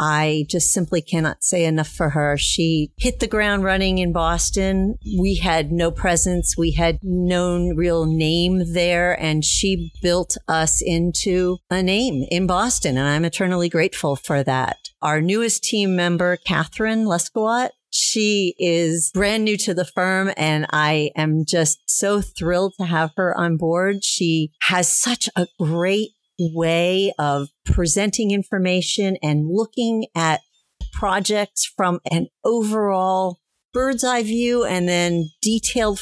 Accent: American